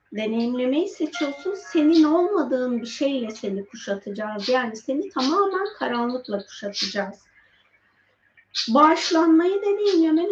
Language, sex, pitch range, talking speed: Turkish, female, 230-325 Hz, 85 wpm